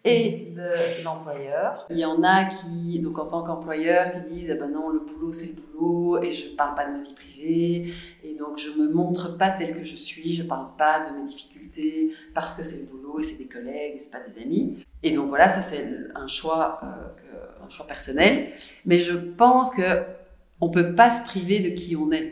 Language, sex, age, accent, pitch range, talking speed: French, female, 40-59, French, 155-180 Hz, 240 wpm